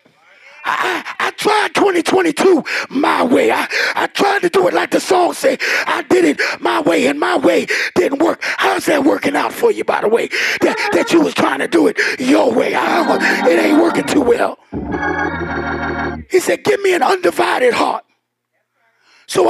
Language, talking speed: English, 180 wpm